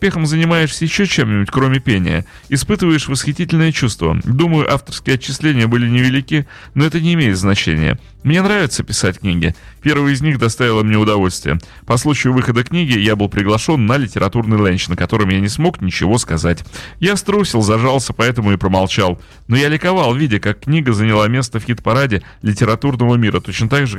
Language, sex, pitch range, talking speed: Russian, male, 100-135 Hz, 165 wpm